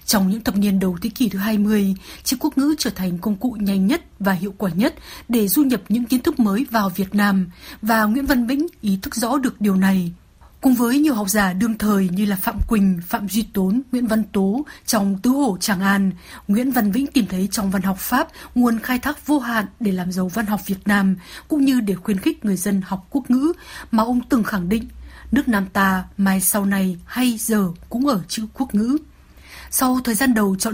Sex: female